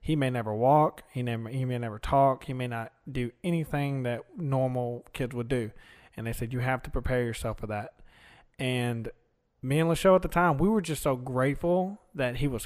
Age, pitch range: 20-39, 120-150 Hz